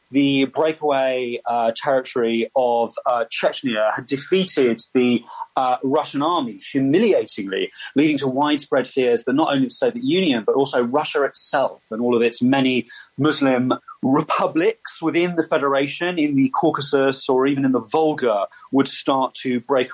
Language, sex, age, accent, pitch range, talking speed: English, male, 30-49, British, 120-150 Hz, 150 wpm